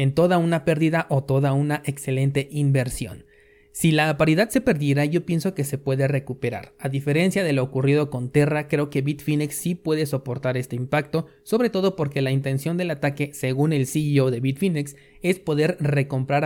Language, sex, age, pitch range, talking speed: Spanish, male, 30-49, 135-165 Hz, 180 wpm